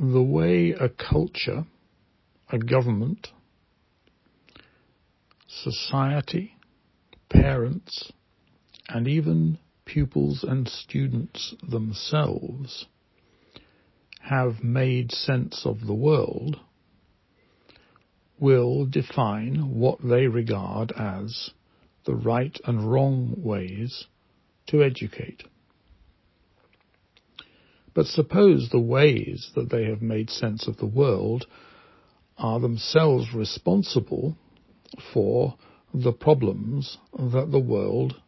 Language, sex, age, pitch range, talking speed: English, male, 60-79, 100-135 Hz, 85 wpm